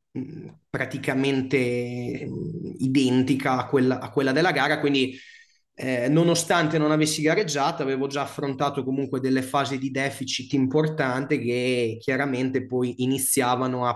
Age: 20-39